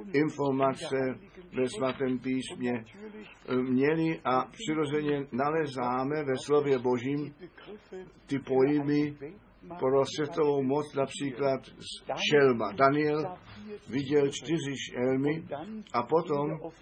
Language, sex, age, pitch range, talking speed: Czech, male, 60-79, 125-155 Hz, 90 wpm